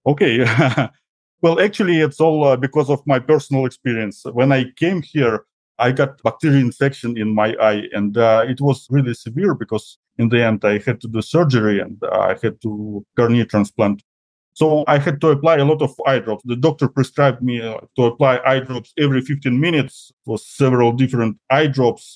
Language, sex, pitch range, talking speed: English, male, 115-140 Hz, 190 wpm